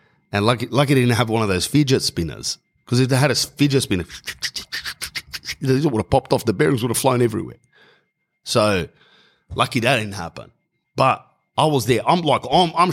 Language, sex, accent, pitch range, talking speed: English, male, Australian, 95-140 Hz, 200 wpm